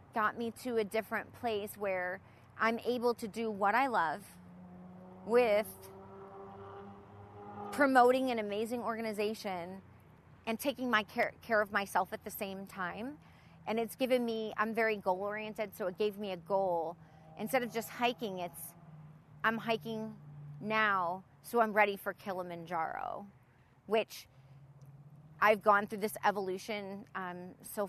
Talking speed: 140 wpm